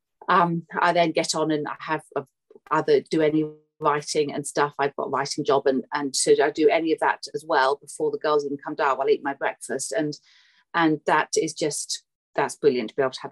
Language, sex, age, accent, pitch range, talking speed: English, female, 40-59, British, 155-230 Hz, 230 wpm